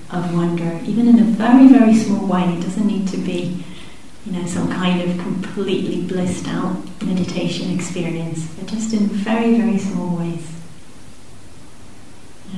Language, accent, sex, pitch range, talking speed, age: English, British, female, 180-215 Hz, 150 wpm, 40-59